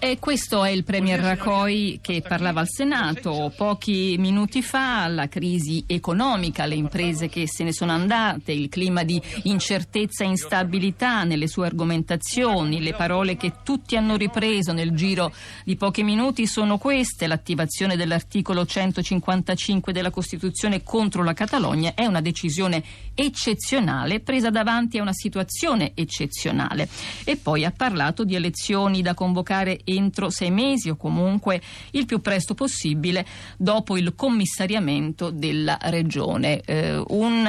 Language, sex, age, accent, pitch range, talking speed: Italian, female, 50-69, native, 165-205 Hz, 135 wpm